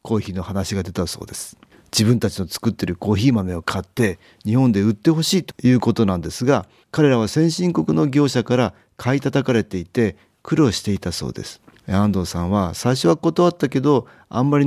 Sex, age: male, 40-59